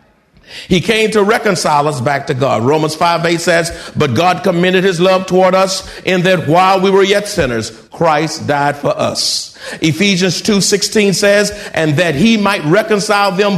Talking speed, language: 175 wpm, English